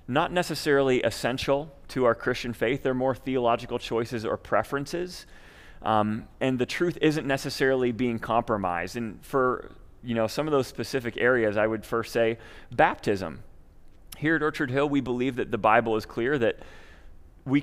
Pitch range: 105-130 Hz